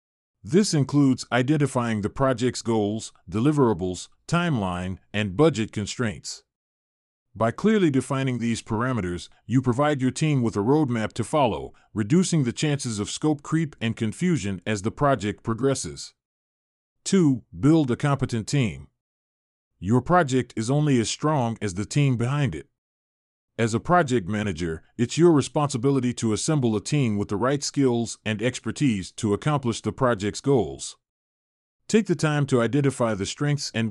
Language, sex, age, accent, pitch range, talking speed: English, male, 40-59, American, 105-140 Hz, 145 wpm